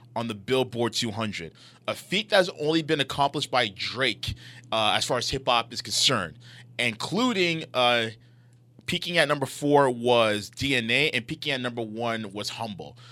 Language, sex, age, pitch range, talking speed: English, male, 20-39, 120-150 Hz, 160 wpm